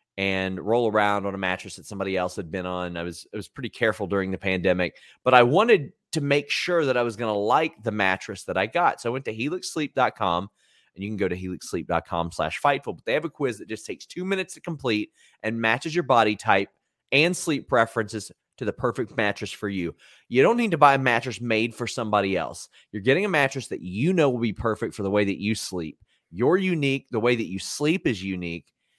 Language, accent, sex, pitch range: English, American, male, 95-130 Hz